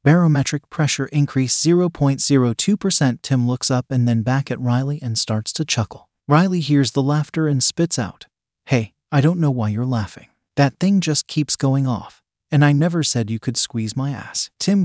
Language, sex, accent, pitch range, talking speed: English, male, American, 120-155 Hz, 185 wpm